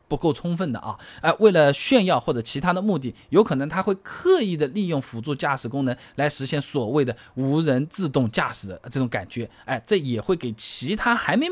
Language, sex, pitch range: Chinese, male, 135-205 Hz